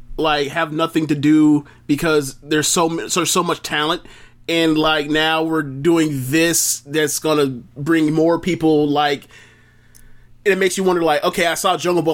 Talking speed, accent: 180 wpm, American